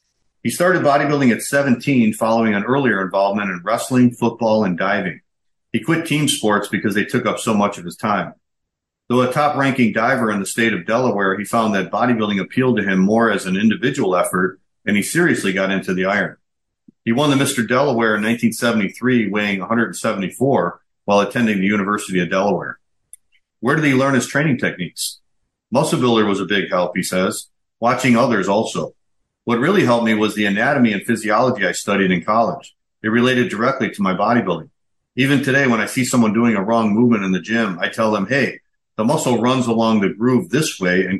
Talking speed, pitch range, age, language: 195 wpm, 105-125 Hz, 50-69, English